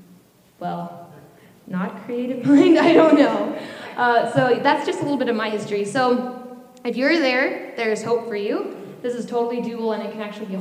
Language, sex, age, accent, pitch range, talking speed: English, female, 10-29, American, 195-235 Hz, 190 wpm